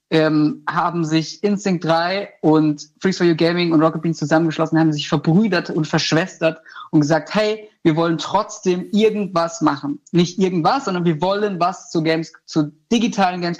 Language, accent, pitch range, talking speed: German, German, 165-200 Hz, 170 wpm